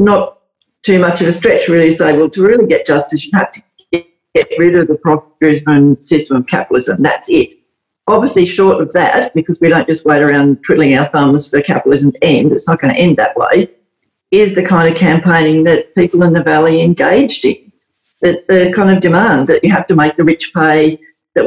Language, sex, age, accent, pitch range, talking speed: English, female, 50-69, Australian, 155-185 Hz, 215 wpm